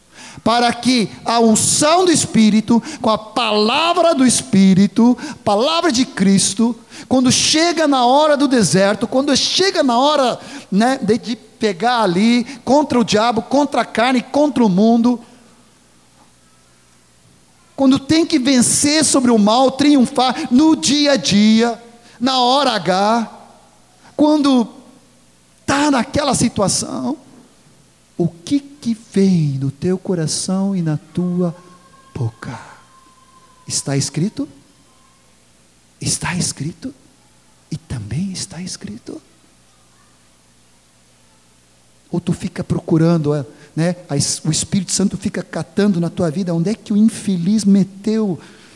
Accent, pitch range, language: Brazilian, 170-255 Hz, Portuguese